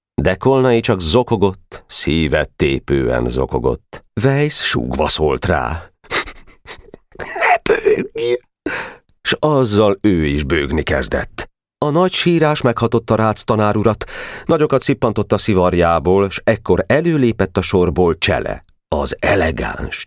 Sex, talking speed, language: male, 110 wpm, Hungarian